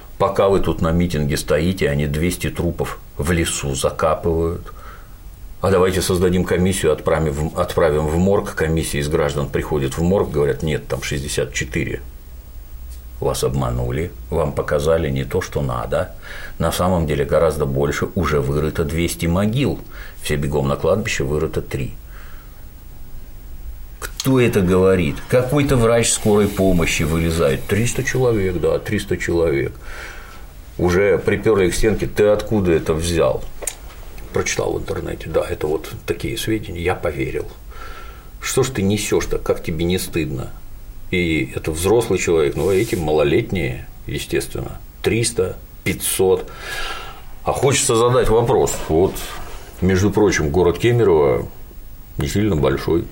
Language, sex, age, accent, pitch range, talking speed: Russian, male, 50-69, native, 75-95 Hz, 130 wpm